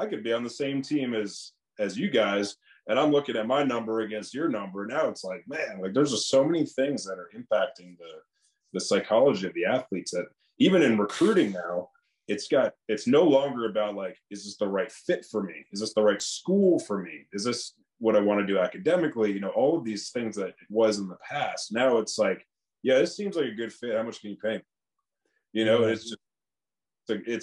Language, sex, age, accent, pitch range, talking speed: English, male, 30-49, American, 100-125 Hz, 230 wpm